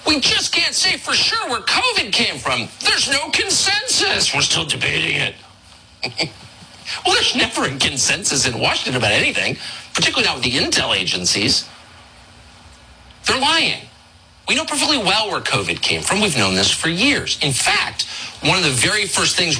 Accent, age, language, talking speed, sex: American, 50-69, English, 170 wpm, male